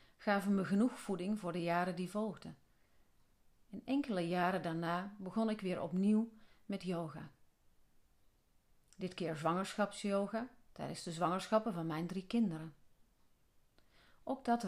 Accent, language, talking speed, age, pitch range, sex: Dutch, Dutch, 125 wpm, 40-59, 170-210 Hz, female